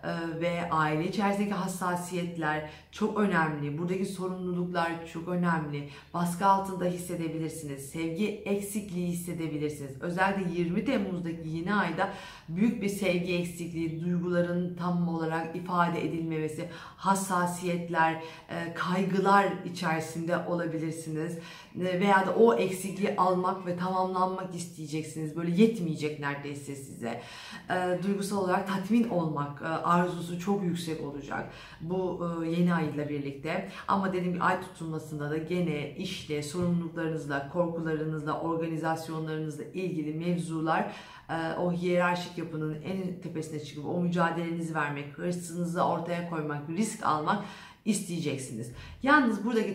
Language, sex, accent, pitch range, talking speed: Turkish, female, native, 160-185 Hz, 105 wpm